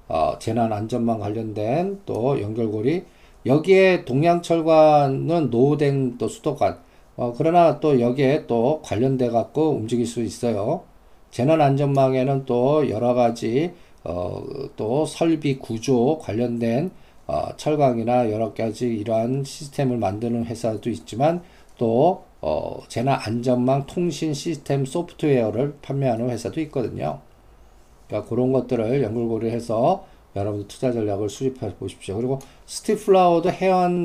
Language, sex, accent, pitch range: Korean, male, native, 115-155 Hz